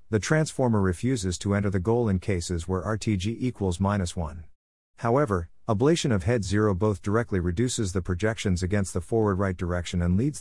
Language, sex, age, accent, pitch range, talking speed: English, male, 50-69, American, 90-110 Hz, 175 wpm